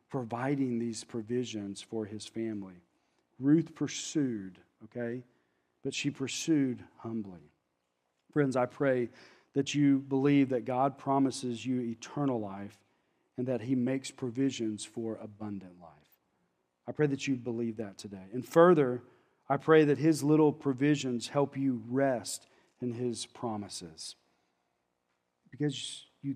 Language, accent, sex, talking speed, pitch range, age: English, American, male, 125 wpm, 115-145 Hz, 40-59